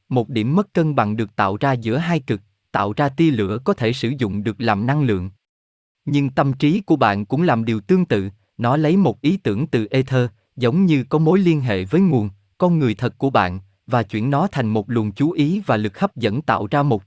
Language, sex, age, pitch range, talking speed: Vietnamese, male, 20-39, 105-155 Hz, 240 wpm